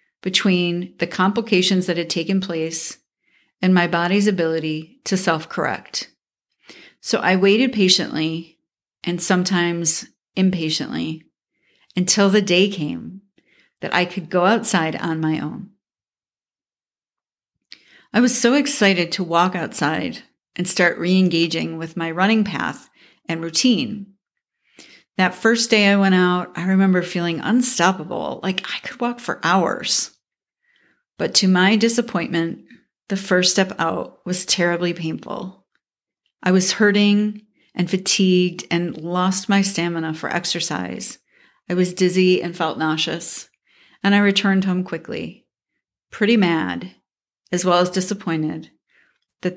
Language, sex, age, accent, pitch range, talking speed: English, female, 40-59, American, 170-200 Hz, 125 wpm